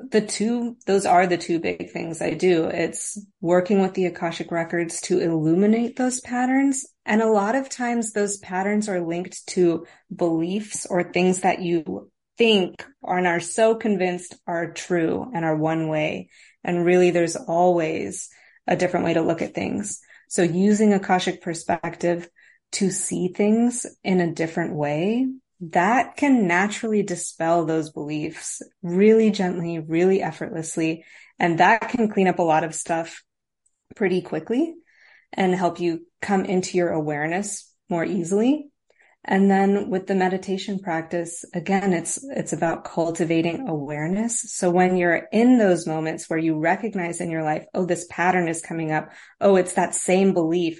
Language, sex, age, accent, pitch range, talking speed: English, female, 30-49, American, 170-205 Hz, 160 wpm